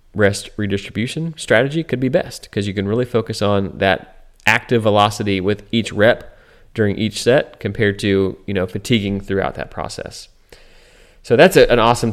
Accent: American